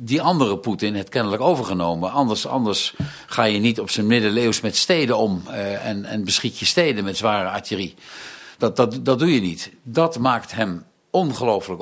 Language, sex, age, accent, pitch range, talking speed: Dutch, male, 50-69, Dutch, 100-135 Hz, 185 wpm